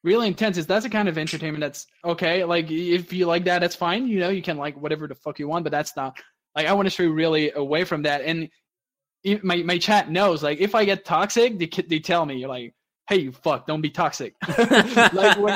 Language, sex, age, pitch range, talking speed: English, male, 20-39, 145-190 Hz, 245 wpm